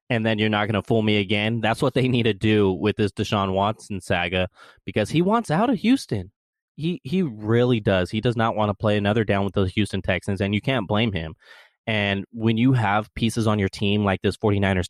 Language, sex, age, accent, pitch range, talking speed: English, male, 20-39, American, 95-115 Hz, 235 wpm